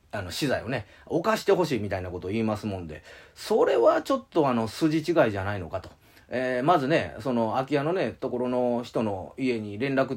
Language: Japanese